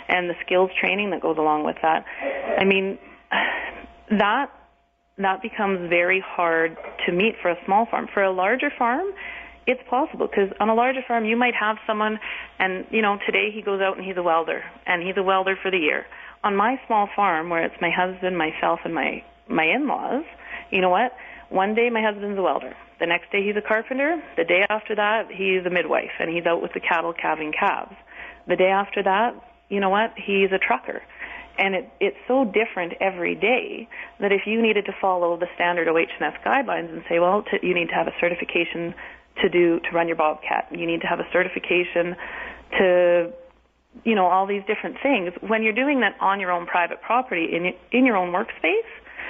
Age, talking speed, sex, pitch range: 30-49, 205 wpm, female, 175-225 Hz